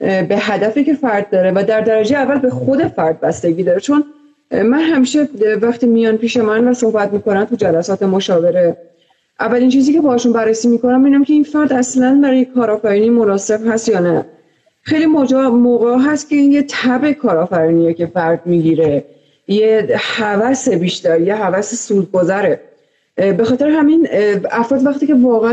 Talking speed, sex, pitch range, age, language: 160 wpm, female, 185-255 Hz, 30-49, Persian